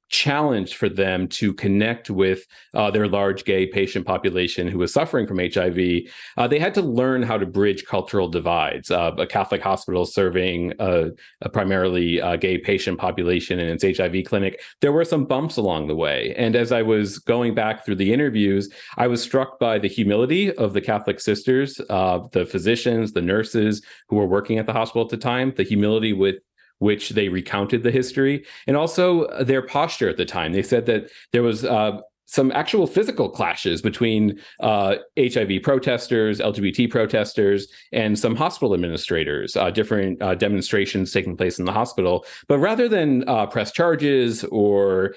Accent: American